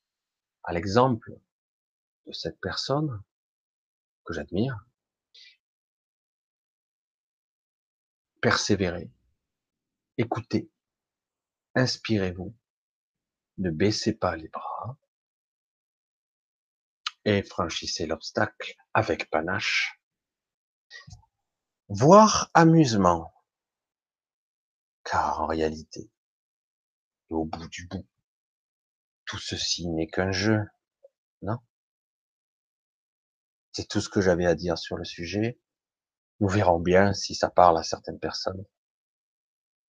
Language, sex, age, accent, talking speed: French, male, 50-69, French, 80 wpm